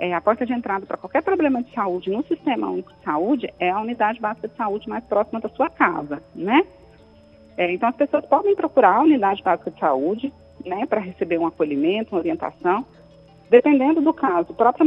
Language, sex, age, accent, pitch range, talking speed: Portuguese, female, 40-59, Brazilian, 185-290 Hz, 200 wpm